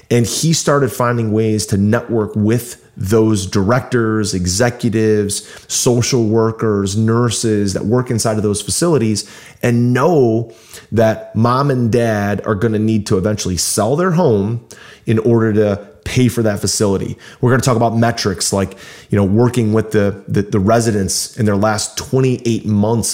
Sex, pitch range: male, 105-125 Hz